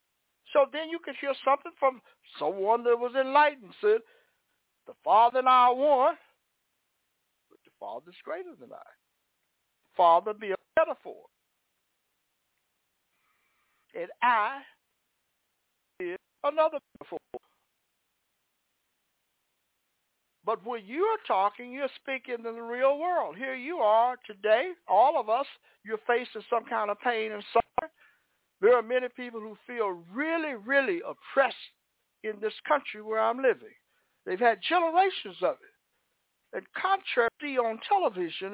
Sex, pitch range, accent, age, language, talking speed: male, 215-290 Hz, American, 60-79, English, 130 wpm